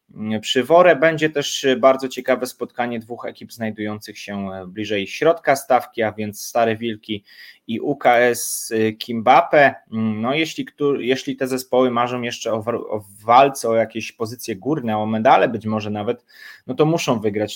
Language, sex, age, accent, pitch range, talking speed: Polish, male, 20-39, native, 110-130 Hz, 145 wpm